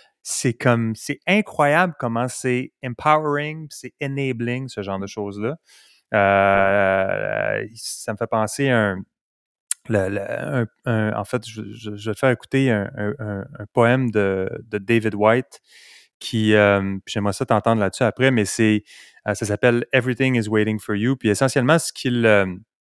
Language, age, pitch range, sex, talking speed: French, 30-49, 110-135 Hz, male, 170 wpm